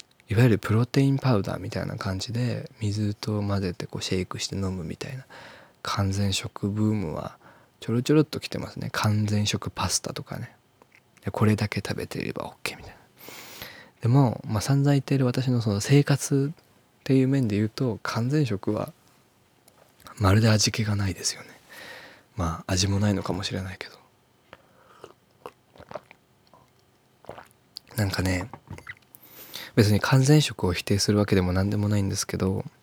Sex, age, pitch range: male, 20-39, 100-125 Hz